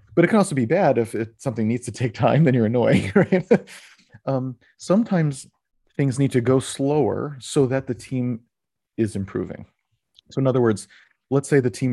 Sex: male